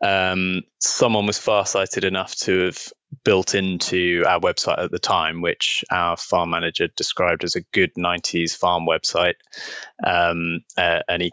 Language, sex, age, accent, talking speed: English, male, 20-39, British, 140 wpm